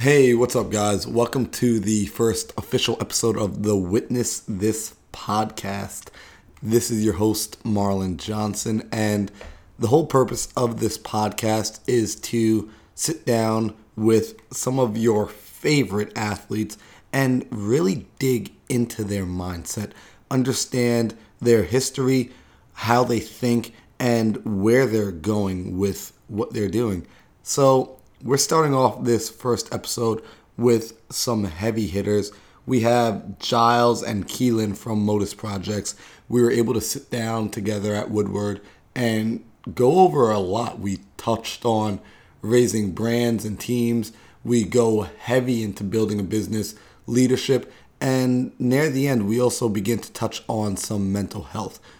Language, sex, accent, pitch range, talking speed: English, male, American, 105-120 Hz, 135 wpm